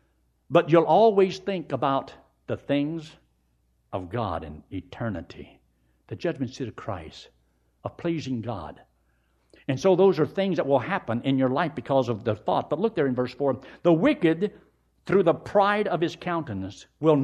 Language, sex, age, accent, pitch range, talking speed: English, male, 60-79, American, 110-165 Hz, 170 wpm